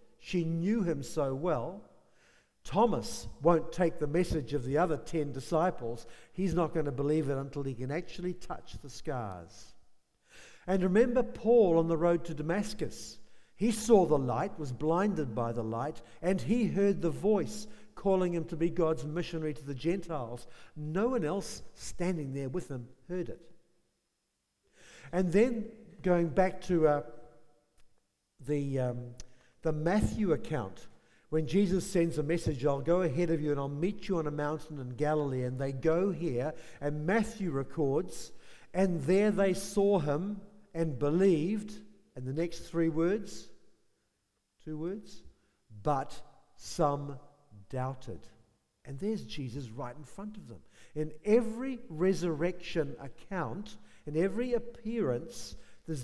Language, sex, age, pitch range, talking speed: English, male, 60-79, 140-185 Hz, 150 wpm